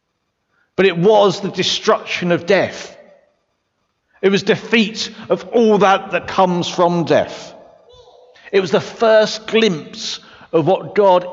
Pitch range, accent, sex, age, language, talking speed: 165-205 Hz, British, male, 50-69, English, 130 wpm